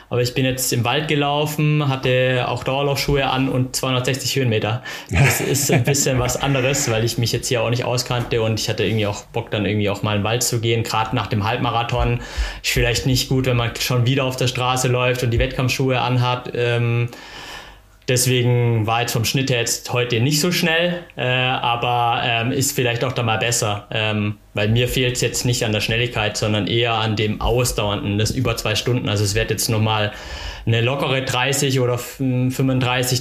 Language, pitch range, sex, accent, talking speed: German, 110-130 Hz, male, German, 200 wpm